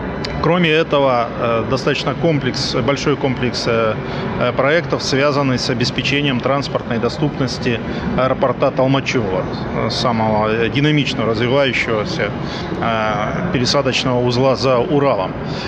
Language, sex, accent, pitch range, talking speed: Russian, male, native, 120-145 Hz, 80 wpm